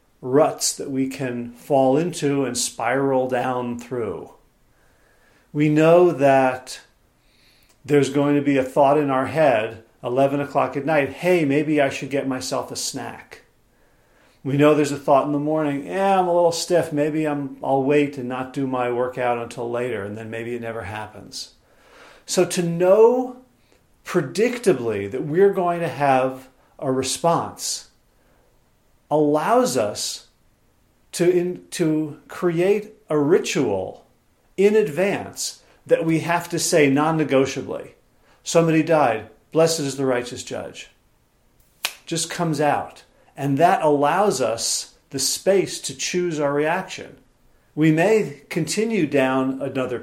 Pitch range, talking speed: 130-165 Hz, 140 wpm